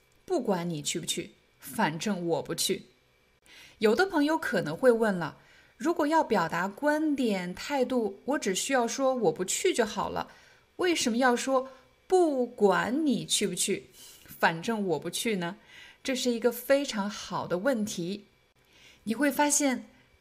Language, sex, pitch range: Chinese, female, 185-255 Hz